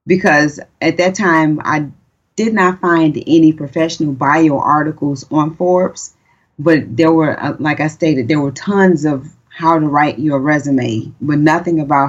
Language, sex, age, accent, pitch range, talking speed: English, female, 30-49, American, 145-175 Hz, 160 wpm